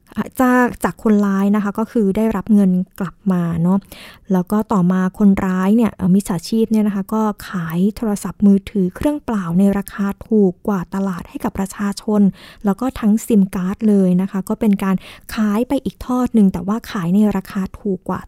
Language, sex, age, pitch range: Thai, female, 20-39, 195-230 Hz